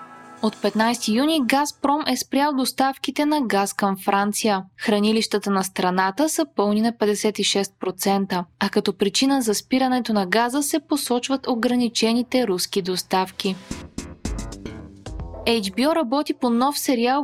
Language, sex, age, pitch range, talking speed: Bulgarian, female, 20-39, 200-275 Hz, 120 wpm